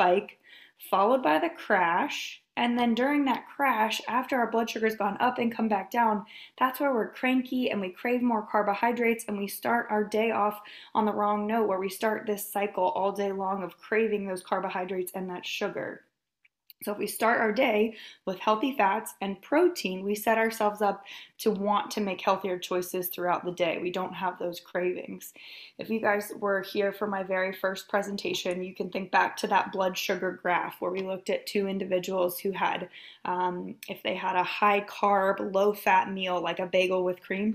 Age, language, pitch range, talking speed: 20-39, English, 185-220 Hz, 200 wpm